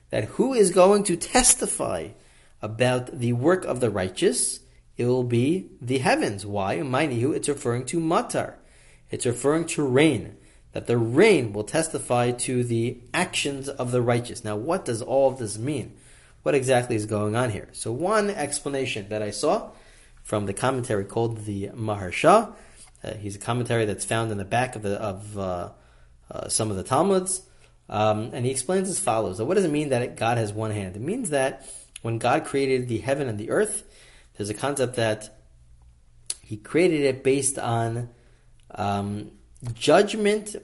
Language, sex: English, male